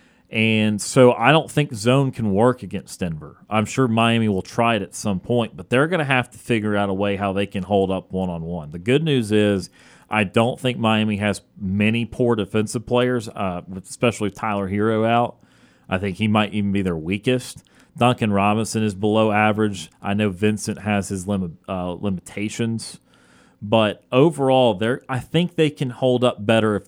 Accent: American